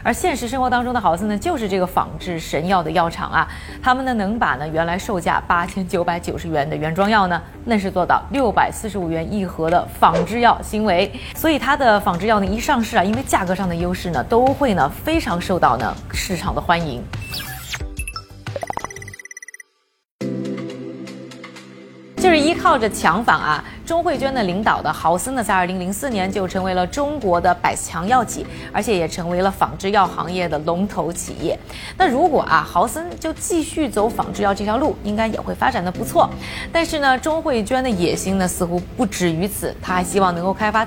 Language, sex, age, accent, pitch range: Chinese, female, 20-39, native, 180-260 Hz